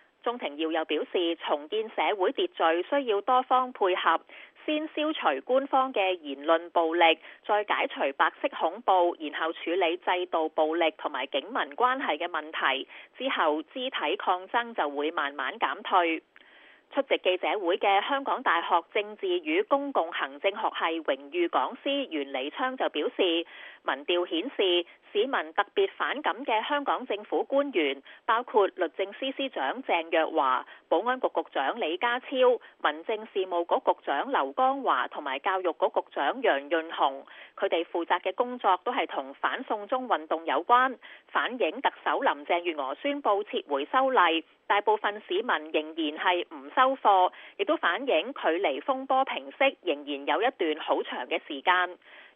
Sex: female